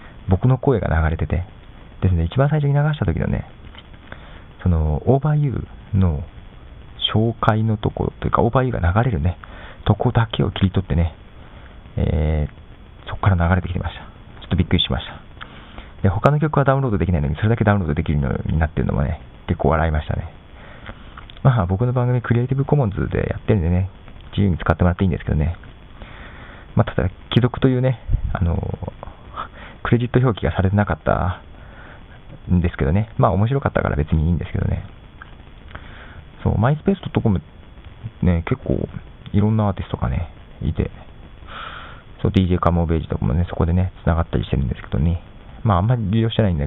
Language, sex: Japanese, male